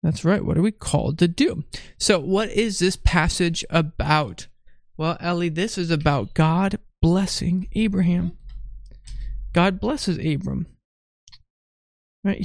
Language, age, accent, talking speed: English, 20-39, American, 125 wpm